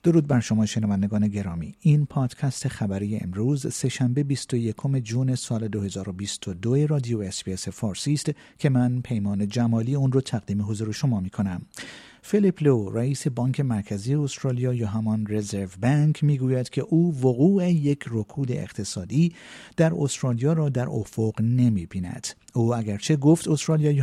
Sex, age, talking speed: male, 50-69, 140 wpm